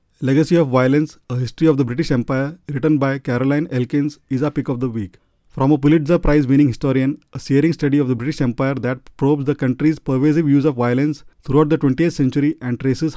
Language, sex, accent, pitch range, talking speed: English, male, Indian, 130-150 Hz, 205 wpm